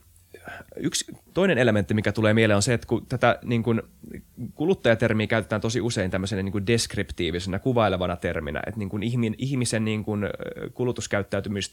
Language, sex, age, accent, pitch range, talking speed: Finnish, male, 20-39, native, 95-120 Hz, 145 wpm